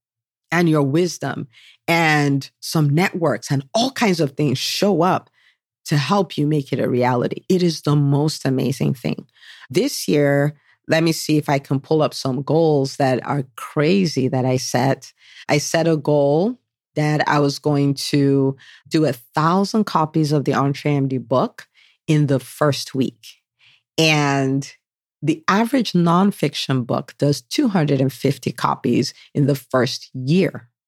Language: English